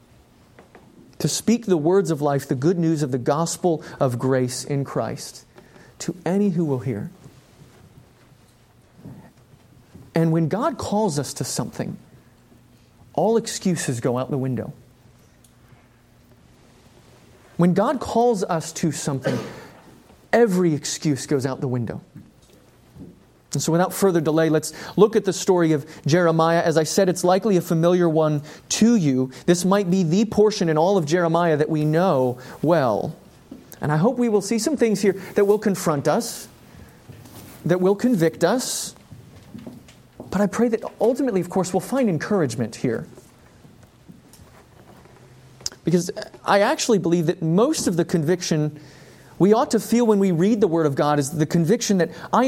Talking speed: 155 wpm